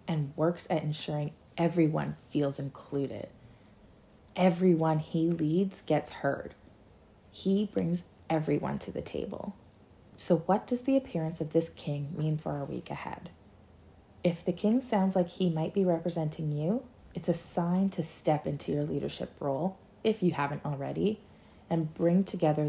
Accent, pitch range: American, 145-175 Hz